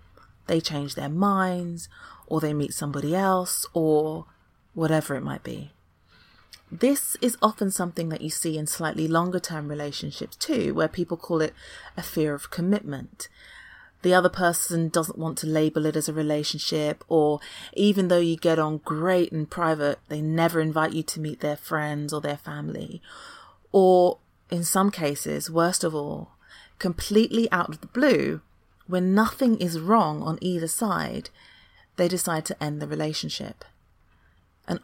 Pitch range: 150-185 Hz